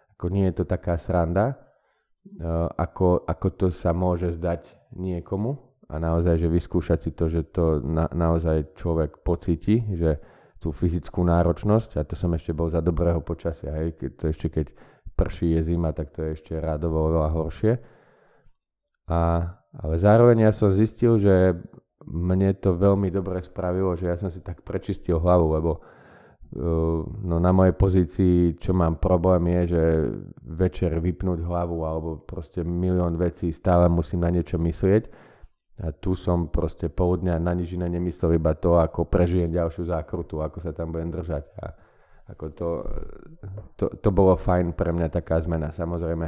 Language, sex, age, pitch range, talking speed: Slovak, male, 20-39, 80-90 Hz, 160 wpm